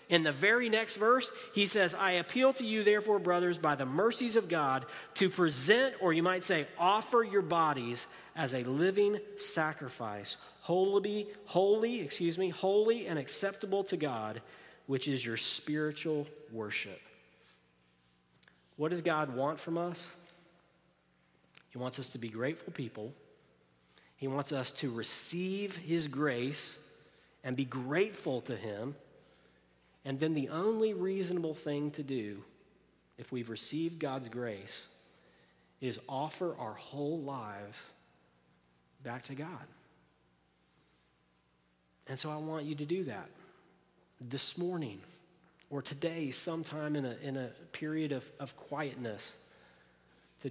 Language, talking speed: English, 135 wpm